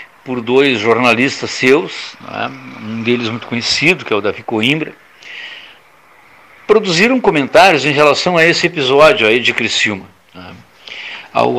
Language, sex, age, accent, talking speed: Portuguese, male, 60-79, Brazilian, 135 wpm